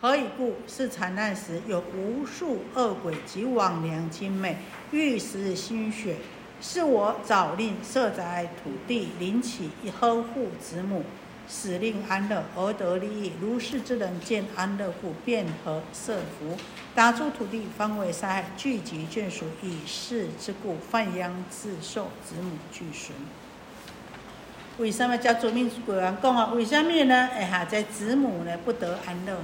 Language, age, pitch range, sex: Chinese, 50-69, 180-235 Hz, female